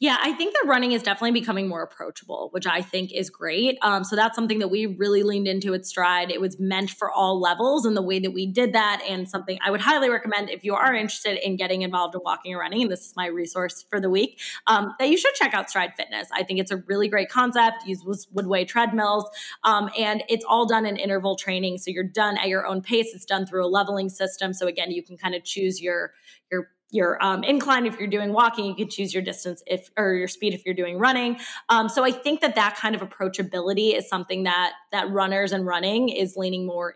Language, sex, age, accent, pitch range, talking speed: English, female, 20-39, American, 185-220 Hz, 245 wpm